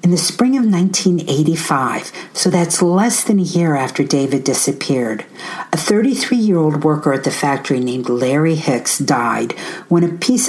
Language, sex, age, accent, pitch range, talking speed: English, female, 50-69, American, 150-195 Hz, 155 wpm